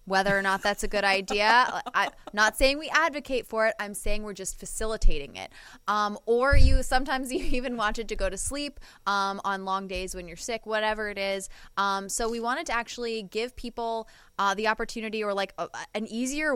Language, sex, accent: English, female, American